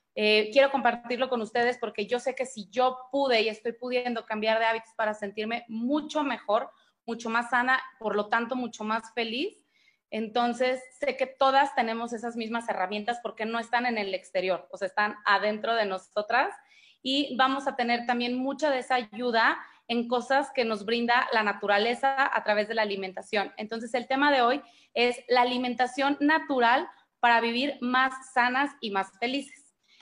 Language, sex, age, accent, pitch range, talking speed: Spanish, female, 30-49, Mexican, 225-260 Hz, 175 wpm